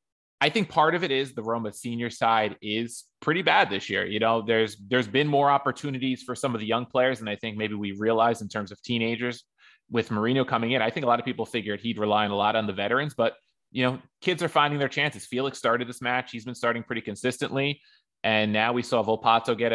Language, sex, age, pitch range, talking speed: English, male, 20-39, 110-125 Hz, 245 wpm